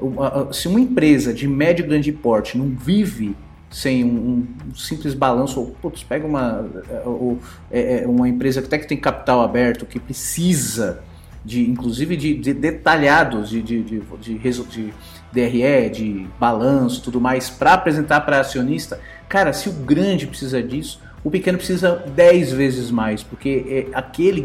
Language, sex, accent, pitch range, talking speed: Portuguese, male, Brazilian, 115-160 Hz, 165 wpm